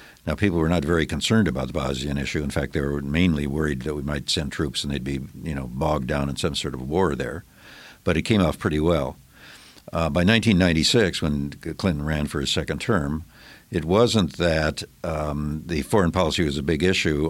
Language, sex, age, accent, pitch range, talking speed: English, male, 60-79, American, 70-80 Hz, 210 wpm